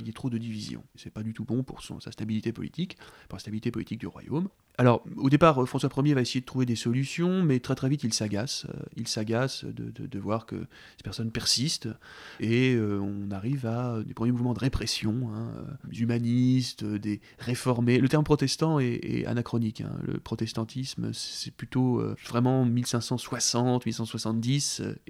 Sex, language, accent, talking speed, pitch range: male, French, French, 185 wpm, 110-130 Hz